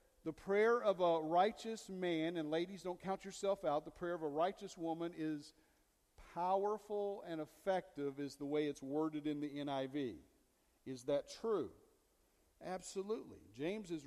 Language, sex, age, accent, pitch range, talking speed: English, male, 50-69, American, 165-220 Hz, 155 wpm